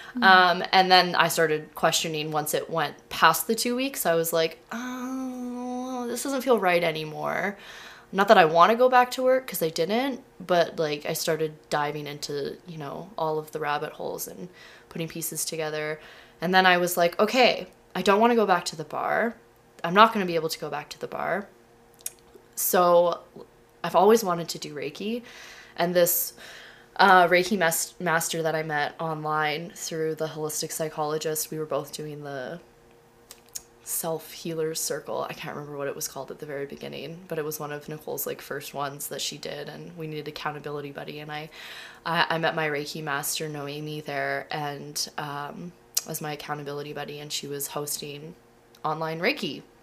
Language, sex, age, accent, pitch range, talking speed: English, female, 20-39, American, 150-185 Hz, 190 wpm